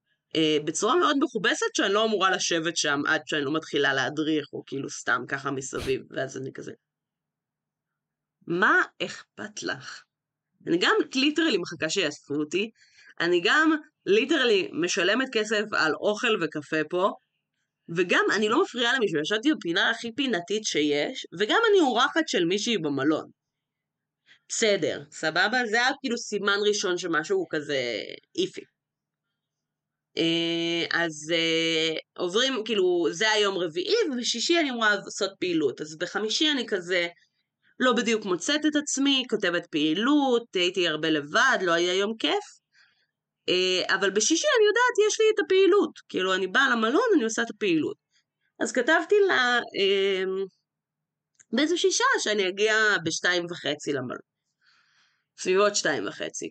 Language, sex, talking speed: Hebrew, female, 135 wpm